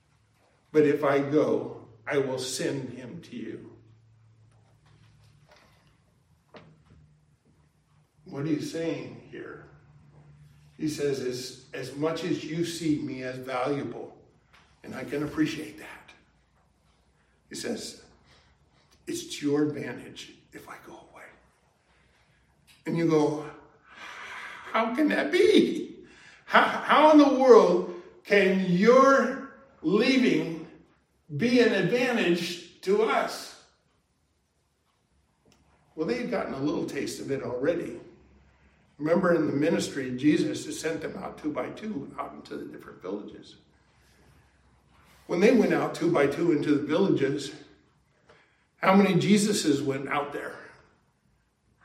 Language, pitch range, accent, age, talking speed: English, 125-190 Hz, American, 50-69, 120 wpm